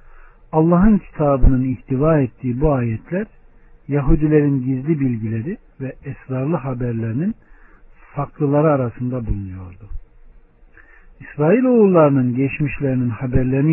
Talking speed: 80 wpm